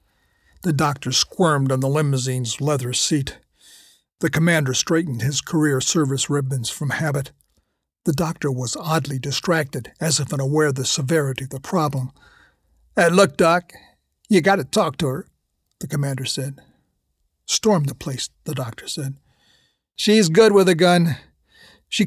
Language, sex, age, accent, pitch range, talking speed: English, male, 50-69, American, 135-185 Hz, 145 wpm